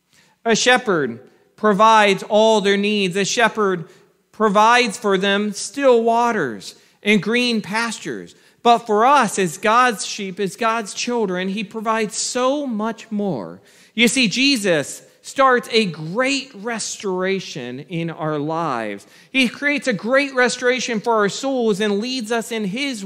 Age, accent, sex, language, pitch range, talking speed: 40-59, American, male, English, 185-235 Hz, 140 wpm